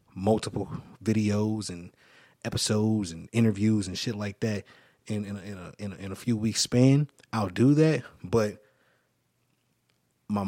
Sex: male